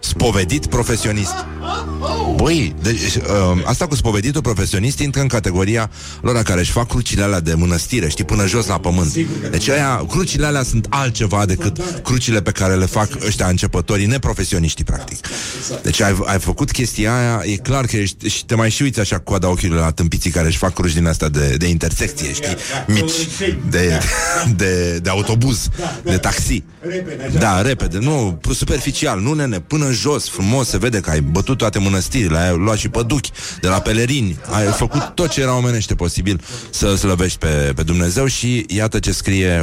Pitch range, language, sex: 85-120 Hz, Romanian, male